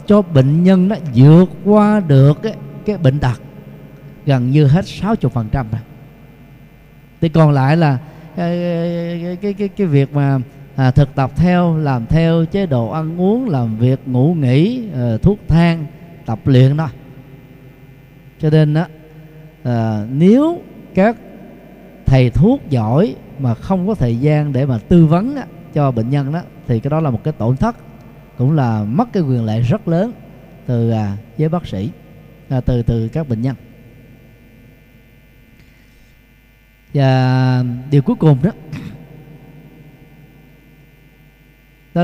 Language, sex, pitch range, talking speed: Vietnamese, male, 130-165 Hz, 135 wpm